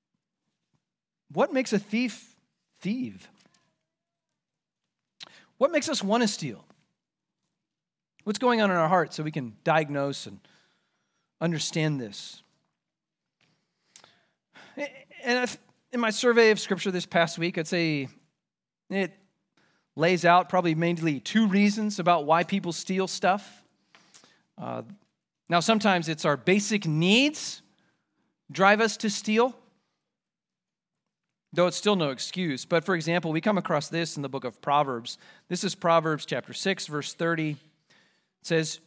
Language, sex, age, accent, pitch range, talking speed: English, male, 40-59, American, 160-210 Hz, 130 wpm